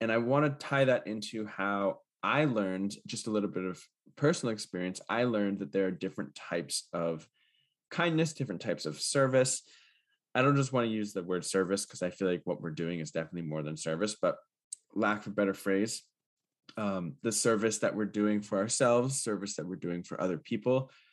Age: 20-39